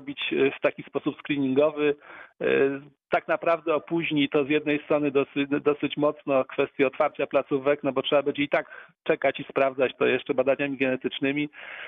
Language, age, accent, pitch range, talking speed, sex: Polish, 40-59, native, 130-150 Hz, 155 wpm, male